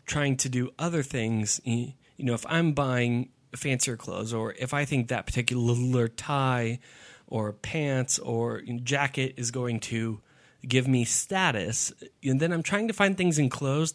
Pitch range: 120-140 Hz